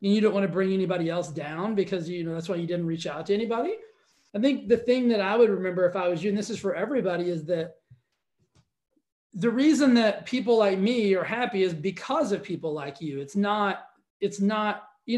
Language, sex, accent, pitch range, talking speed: English, male, American, 170-215 Hz, 230 wpm